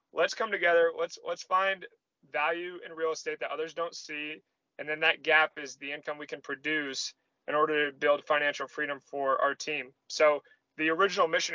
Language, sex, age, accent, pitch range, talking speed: English, male, 30-49, American, 145-165 Hz, 190 wpm